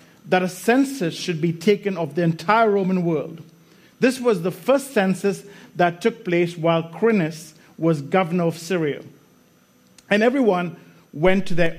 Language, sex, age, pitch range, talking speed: English, male, 50-69, 155-190 Hz, 155 wpm